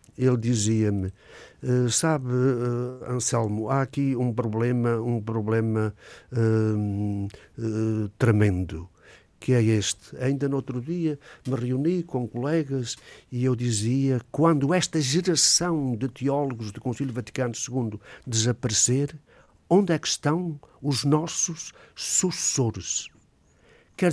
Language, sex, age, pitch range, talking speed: Portuguese, male, 60-79, 120-160 Hz, 105 wpm